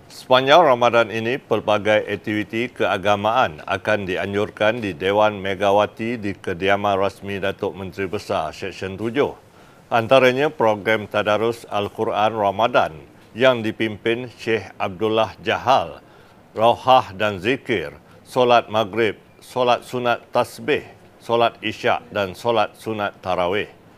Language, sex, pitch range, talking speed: Malay, male, 100-120 Hz, 110 wpm